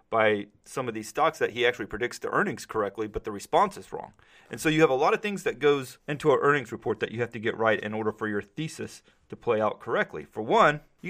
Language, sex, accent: English, male, American